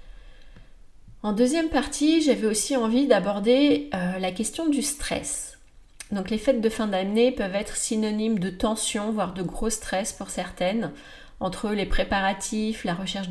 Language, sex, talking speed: French, female, 155 wpm